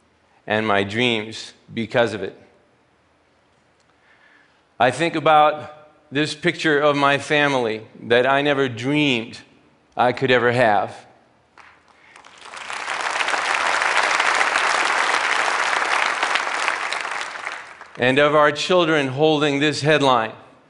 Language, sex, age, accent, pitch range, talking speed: Russian, male, 50-69, American, 125-160 Hz, 85 wpm